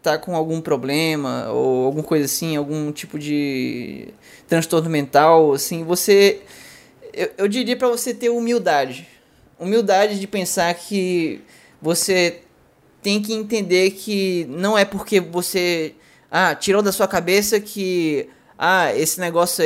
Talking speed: 135 wpm